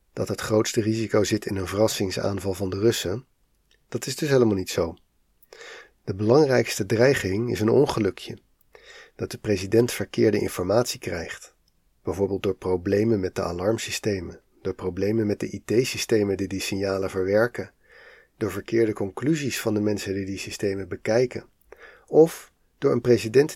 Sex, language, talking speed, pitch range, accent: male, Dutch, 150 wpm, 95-115 Hz, Dutch